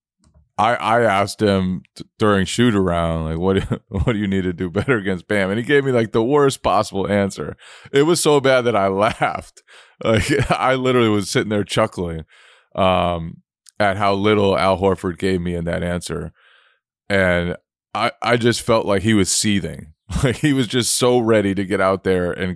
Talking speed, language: 190 wpm, English